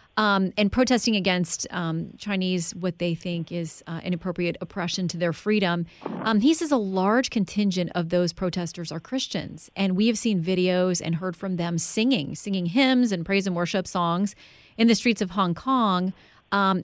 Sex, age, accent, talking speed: female, 30-49, American, 180 wpm